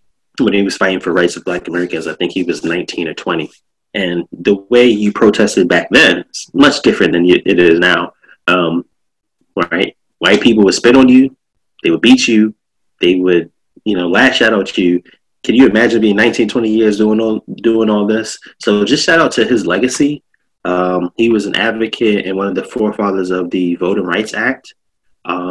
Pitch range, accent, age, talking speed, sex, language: 90-110 Hz, American, 20-39, 200 wpm, male, English